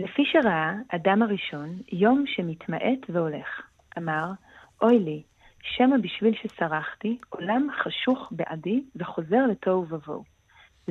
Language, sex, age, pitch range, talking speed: Hebrew, female, 30-49, 170-225 Hz, 105 wpm